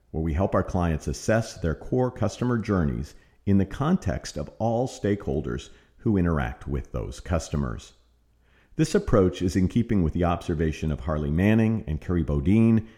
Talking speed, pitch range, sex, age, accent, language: 160 wpm, 75-110 Hz, male, 50-69, American, English